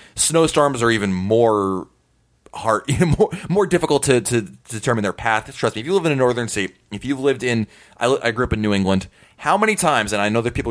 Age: 30-49